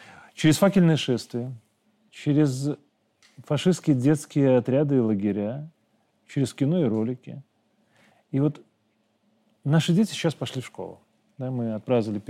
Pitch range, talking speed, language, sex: 115-150 Hz, 110 wpm, Russian, male